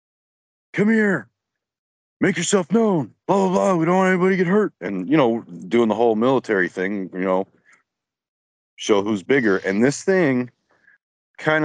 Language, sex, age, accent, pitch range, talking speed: English, male, 30-49, American, 105-145 Hz, 165 wpm